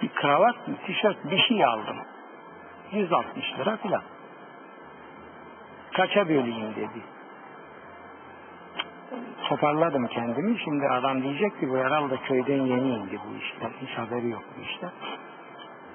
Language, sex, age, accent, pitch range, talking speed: Turkish, male, 60-79, native, 130-180 Hz, 115 wpm